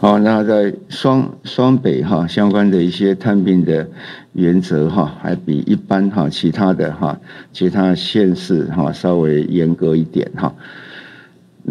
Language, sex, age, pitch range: Chinese, male, 50-69, 85-100 Hz